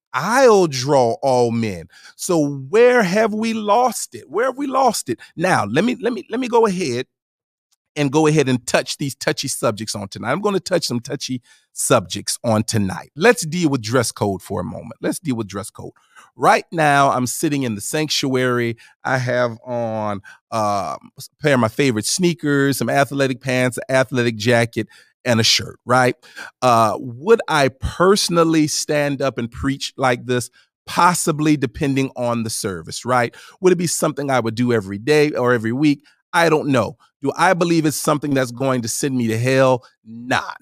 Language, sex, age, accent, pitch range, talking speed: English, male, 40-59, American, 120-155 Hz, 190 wpm